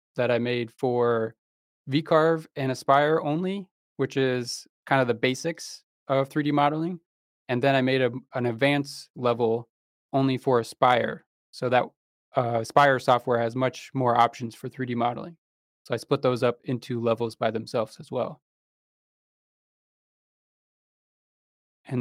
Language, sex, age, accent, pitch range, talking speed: English, male, 20-39, American, 120-140 Hz, 140 wpm